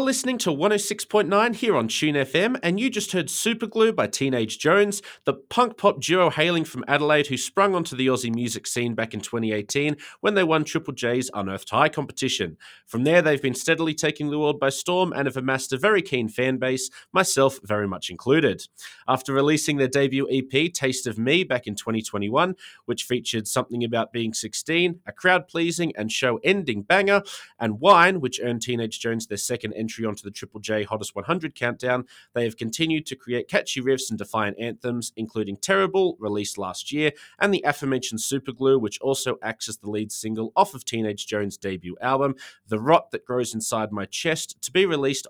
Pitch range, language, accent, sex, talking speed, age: 115-155 Hz, English, Australian, male, 185 wpm, 30-49